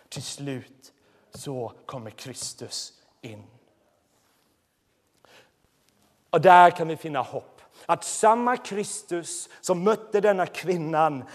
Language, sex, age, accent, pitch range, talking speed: Swedish, male, 30-49, native, 140-185 Hz, 100 wpm